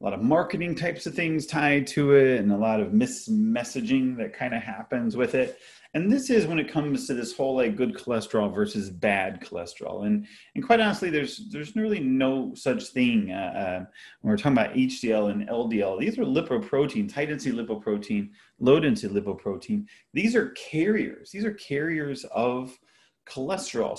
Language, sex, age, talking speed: English, male, 30-49, 175 wpm